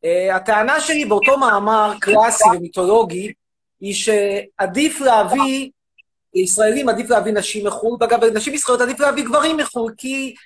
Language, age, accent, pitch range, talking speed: Hebrew, 30-49, native, 205-285 Hz, 130 wpm